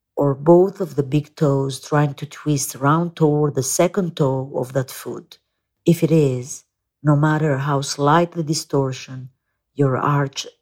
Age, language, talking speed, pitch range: 50-69, English, 160 wpm, 140-170 Hz